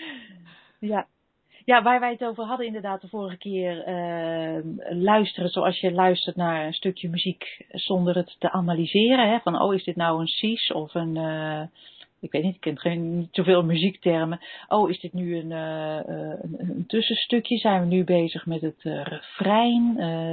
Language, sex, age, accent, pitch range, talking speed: Dutch, female, 40-59, Dutch, 170-215 Hz, 175 wpm